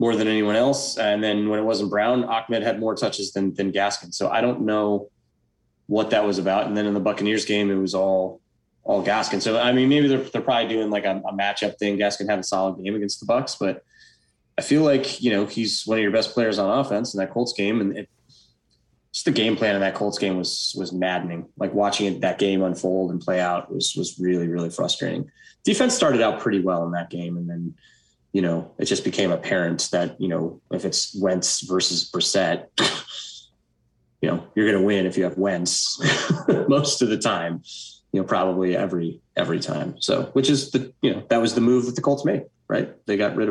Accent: American